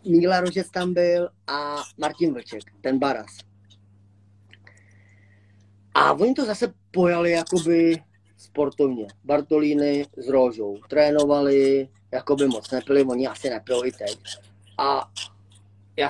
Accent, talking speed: native, 110 wpm